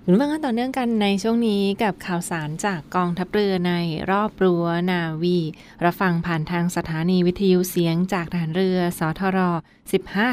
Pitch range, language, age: 170-200 Hz, Thai, 20-39